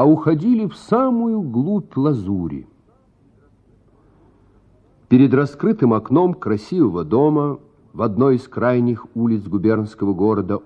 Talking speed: 100 wpm